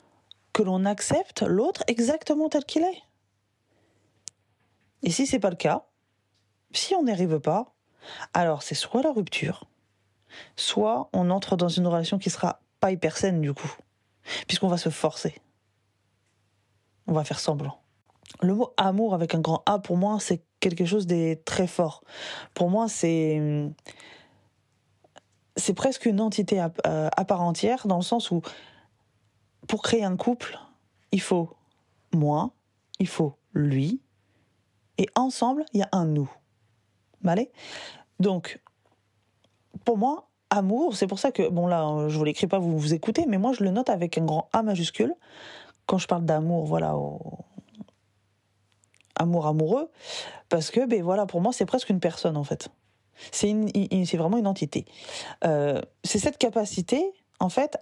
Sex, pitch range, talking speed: female, 145-210 Hz, 165 wpm